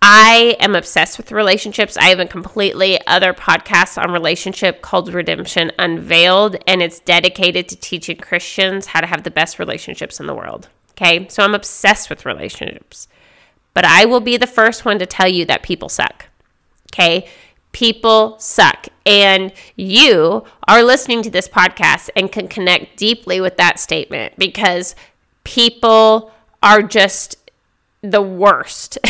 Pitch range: 185-225 Hz